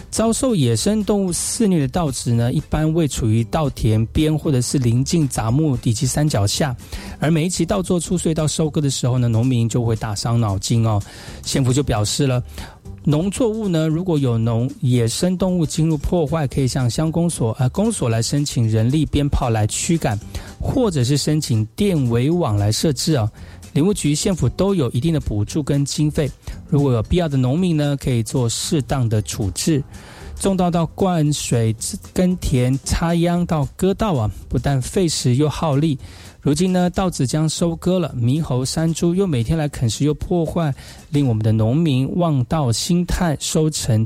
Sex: male